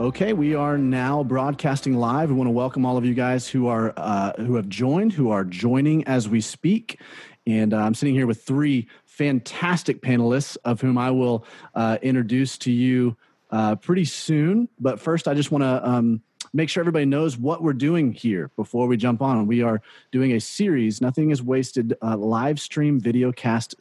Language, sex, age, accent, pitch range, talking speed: English, male, 30-49, American, 120-140 Hz, 190 wpm